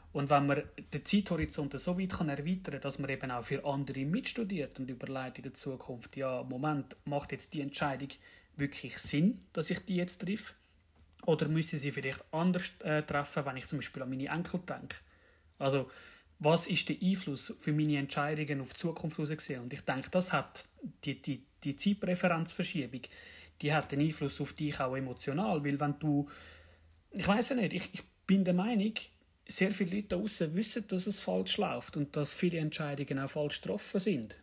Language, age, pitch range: English, 30-49, 140-180 Hz